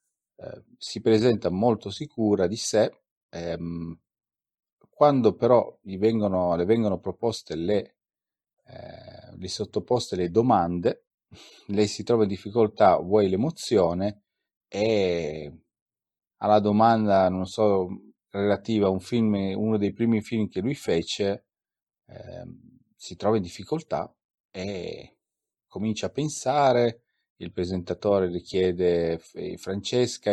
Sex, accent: male, native